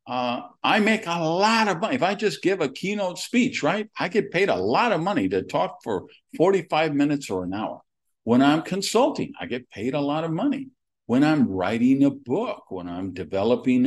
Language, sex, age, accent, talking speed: English, male, 50-69, American, 210 wpm